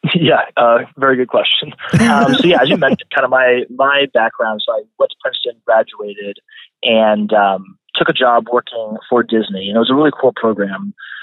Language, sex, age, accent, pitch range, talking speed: English, male, 30-49, American, 105-140 Hz, 200 wpm